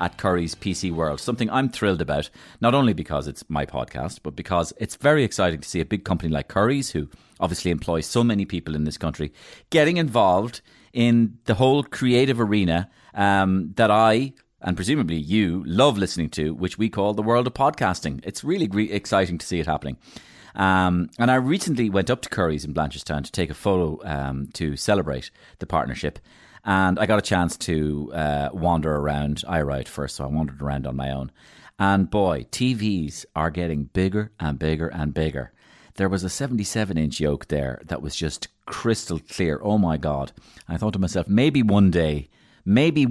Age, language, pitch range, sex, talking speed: 30-49, English, 75-105 Hz, male, 190 wpm